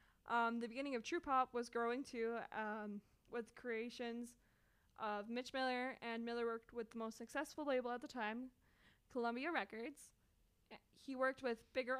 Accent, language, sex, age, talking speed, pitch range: American, English, female, 20-39, 160 wpm, 220-245 Hz